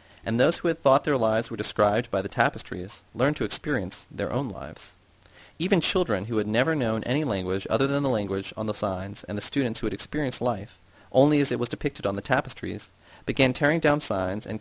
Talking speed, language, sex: 220 wpm, English, male